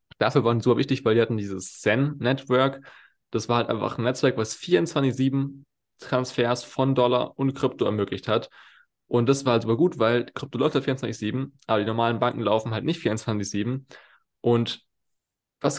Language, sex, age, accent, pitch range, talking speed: German, male, 20-39, German, 110-135 Hz, 175 wpm